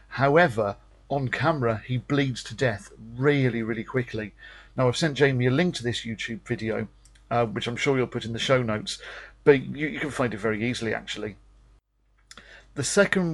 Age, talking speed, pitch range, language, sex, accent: 40-59, 185 wpm, 115-140 Hz, English, male, British